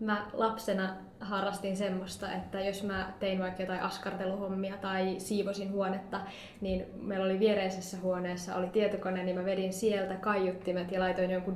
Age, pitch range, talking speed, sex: 20-39, 190-215 Hz, 150 wpm, female